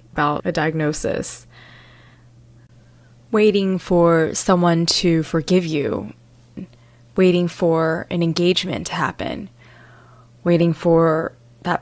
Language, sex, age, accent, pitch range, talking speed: English, female, 20-39, American, 120-180 Hz, 90 wpm